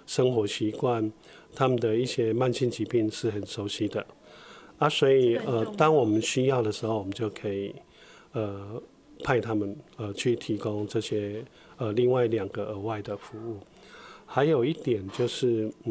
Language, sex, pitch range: Chinese, male, 105-125 Hz